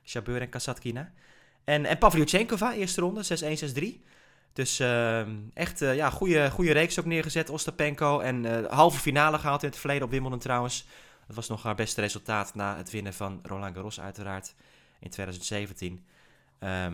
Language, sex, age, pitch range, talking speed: Dutch, male, 20-39, 115-160 Hz, 170 wpm